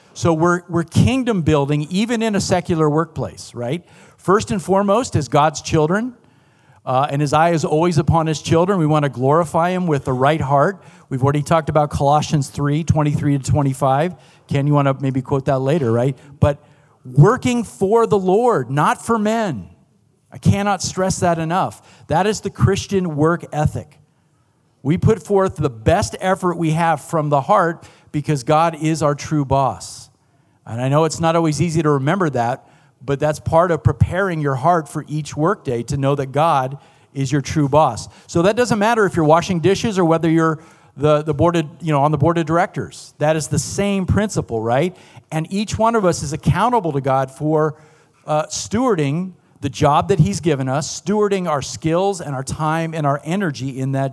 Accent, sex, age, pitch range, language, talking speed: American, male, 50-69, 140-170 Hz, English, 195 wpm